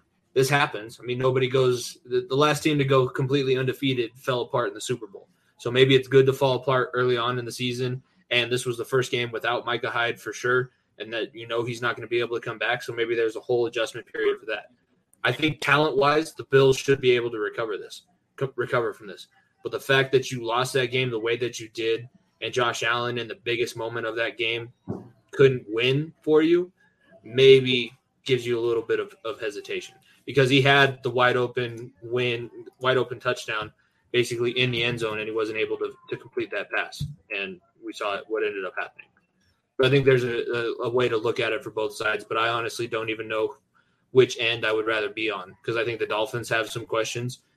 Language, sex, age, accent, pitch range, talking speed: English, male, 20-39, American, 120-140 Hz, 230 wpm